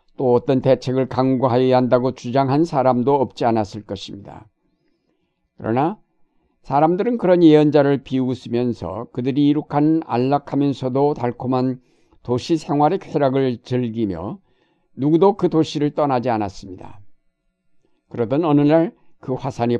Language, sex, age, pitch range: Korean, male, 50-69, 120-150 Hz